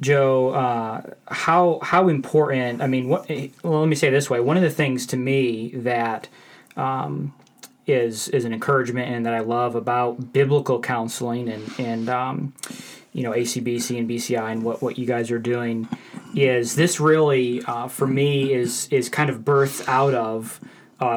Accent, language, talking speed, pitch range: American, English, 180 wpm, 120-140 Hz